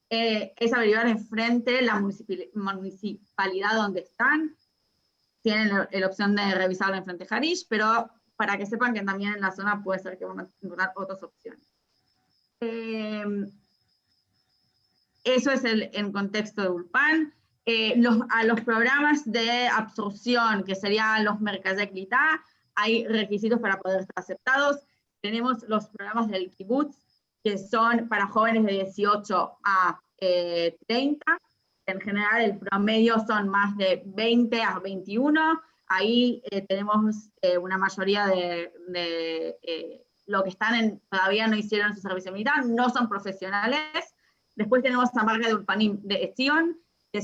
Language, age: Spanish, 20-39